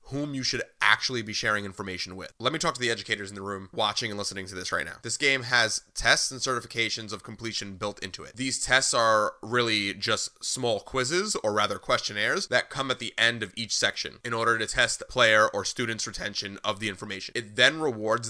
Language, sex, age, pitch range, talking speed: English, male, 30-49, 105-125 Hz, 220 wpm